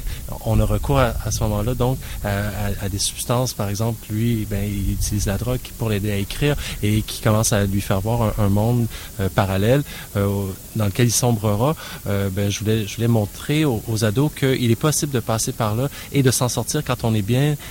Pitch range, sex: 105-130 Hz, male